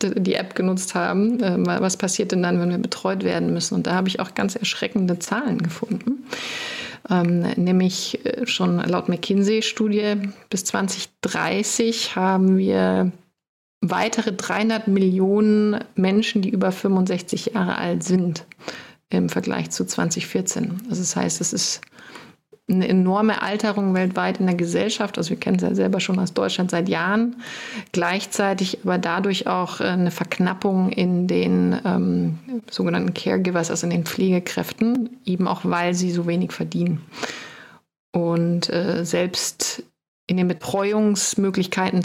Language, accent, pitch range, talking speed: German, German, 175-210 Hz, 135 wpm